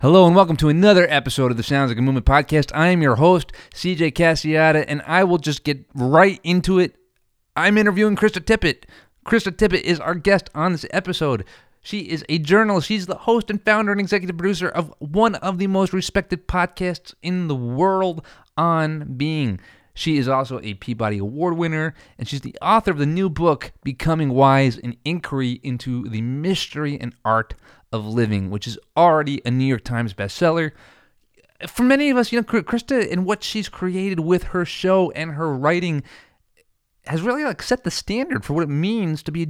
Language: English